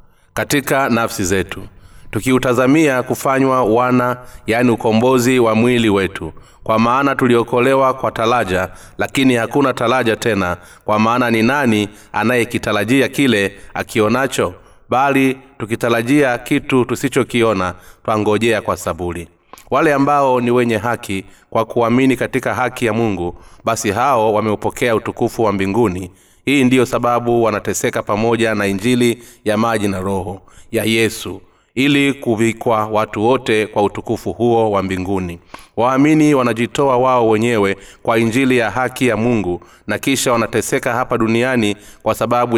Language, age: Swahili, 30-49